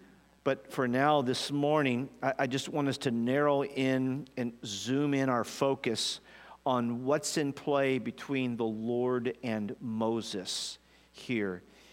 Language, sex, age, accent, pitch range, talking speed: English, male, 50-69, American, 115-140 Hz, 140 wpm